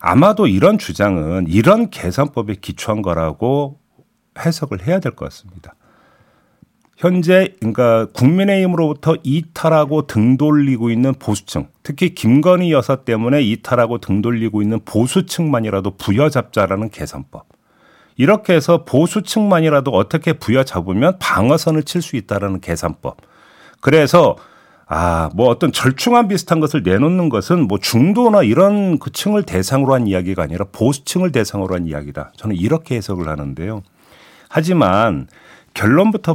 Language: Korean